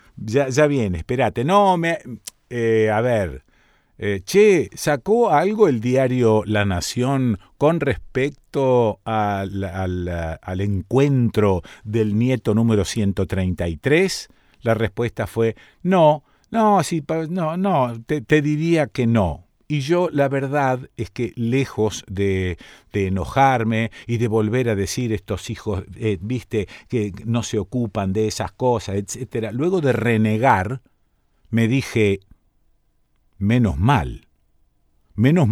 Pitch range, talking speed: 105-135 Hz, 125 wpm